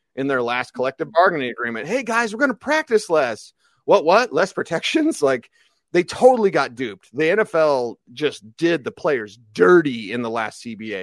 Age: 30-49